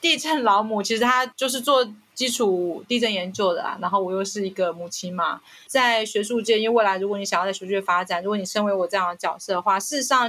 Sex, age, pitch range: female, 30-49, 195-235 Hz